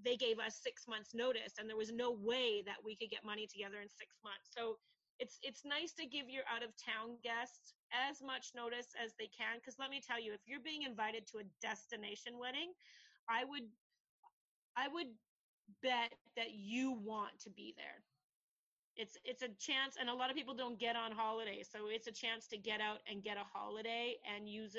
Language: English